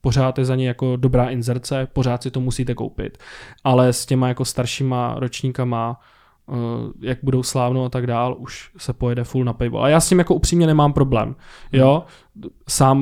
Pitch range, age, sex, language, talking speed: 125-140 Hz, 20-39, male, Czech, 185 wpm